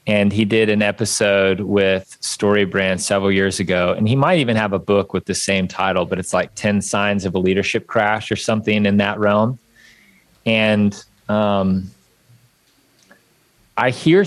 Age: 30-49